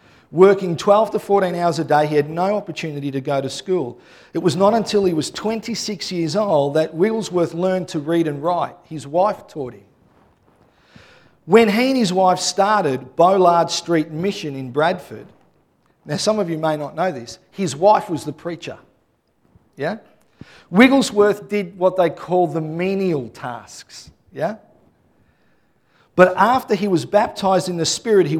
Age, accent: 40-59, Australian